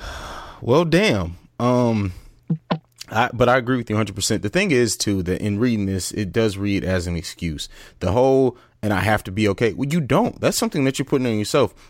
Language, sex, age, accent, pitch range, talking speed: English, male, 30-49, American, 100-135 Hz, 215 wpm